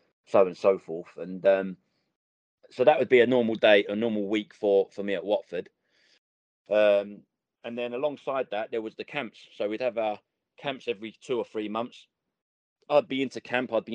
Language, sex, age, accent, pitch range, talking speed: English, male, 30-49, British, 100-120 Hz, 200 wpm